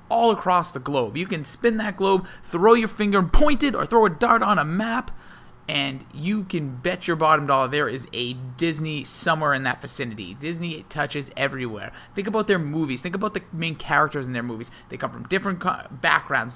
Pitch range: 135-185 Hz